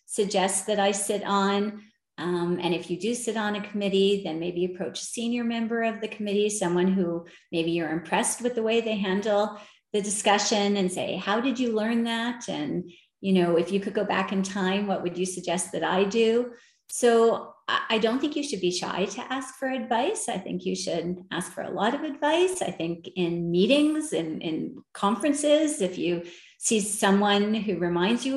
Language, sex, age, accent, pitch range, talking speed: English, female, 40-59, American, 185-245 Hz, 200 wpm